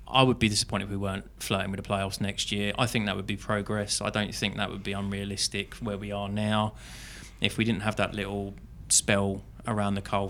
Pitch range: 100-110 Hz